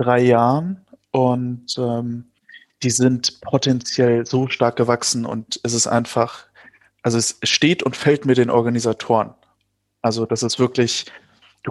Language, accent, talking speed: German, German, 140 wpm